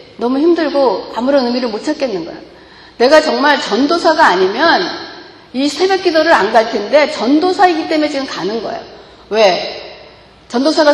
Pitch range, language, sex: 225-335 Hz, Korean, female